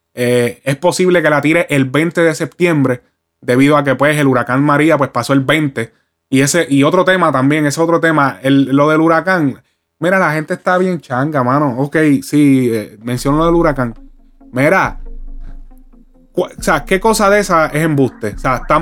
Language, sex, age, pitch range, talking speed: Spanish, male, 20-39, 135-185 Hz, 190 wpm